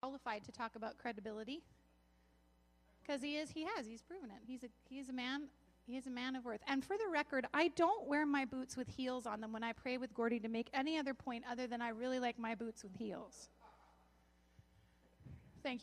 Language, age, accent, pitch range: English, 30-49, American, 225-310 Hz